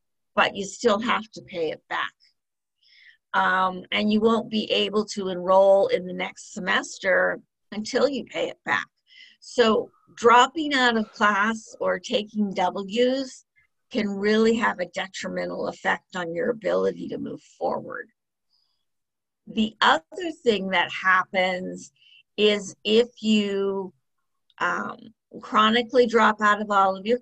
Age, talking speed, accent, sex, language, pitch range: 50-69, 130 wpm, American, female, English, 185-230 Hz